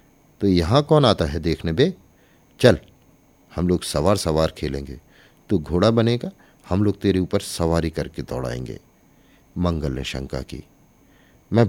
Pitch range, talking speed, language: 75-110 Hz, 150 wpm, Hindi